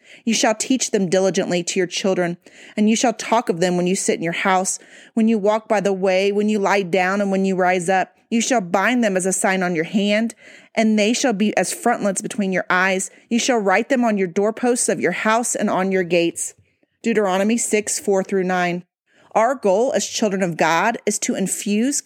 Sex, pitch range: female, 185-235 Hz